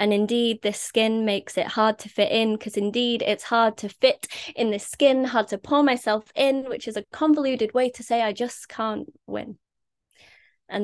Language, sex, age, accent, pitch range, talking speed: English, female, 20-39, British, 225-270 Hz, 200 wpm